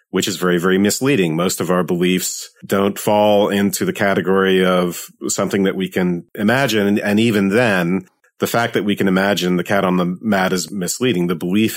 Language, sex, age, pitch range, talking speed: English, male, 40-59, 90-110 Hz, 195 wpm